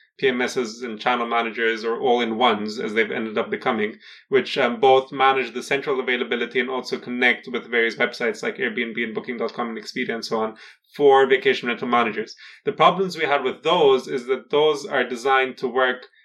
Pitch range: 120-150 Hz